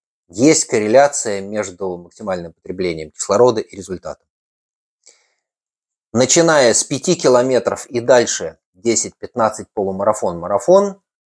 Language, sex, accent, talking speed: Russian, male, native, 85 wpm